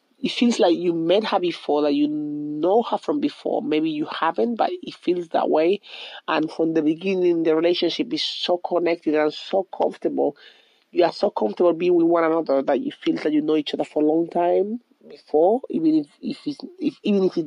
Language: English